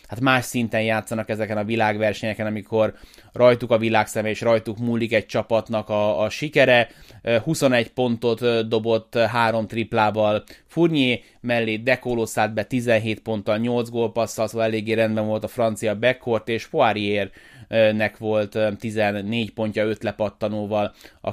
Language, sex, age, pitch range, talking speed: Hungarian, male, 20-39, 105-125 Hz, 140 wpm